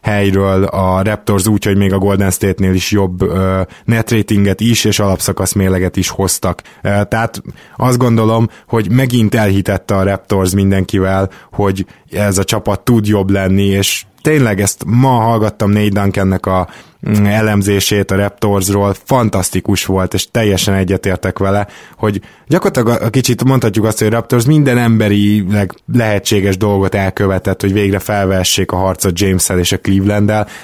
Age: 20-39